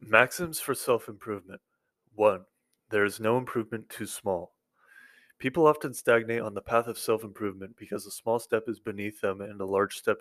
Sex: male